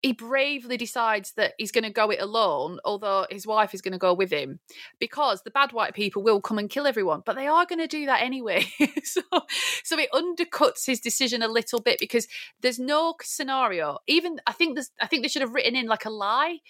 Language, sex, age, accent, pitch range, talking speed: English, female, 30-49, British, 205-280 Hz, 225 wpm